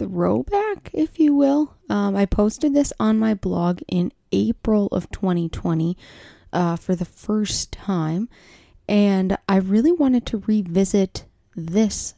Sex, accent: female, American